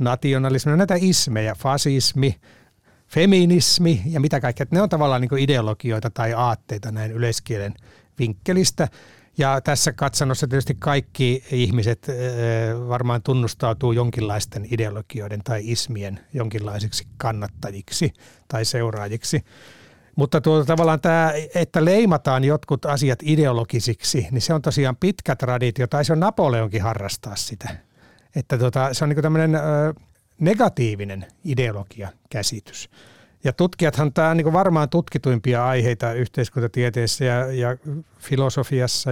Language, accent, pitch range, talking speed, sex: Finnish, native, 115-145 Hz, 115 wpm, male